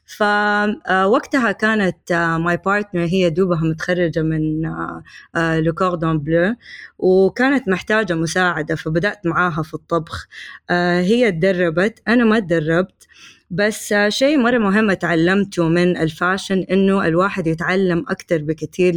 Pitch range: 165-190 Hz